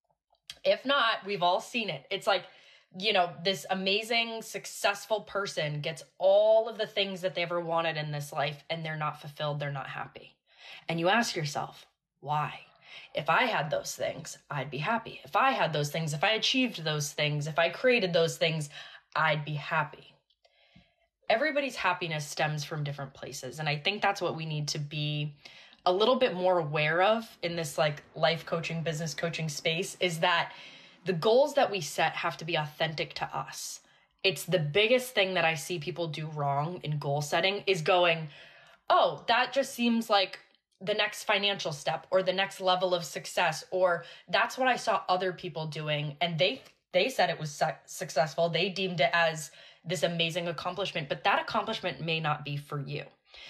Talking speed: 185 wpm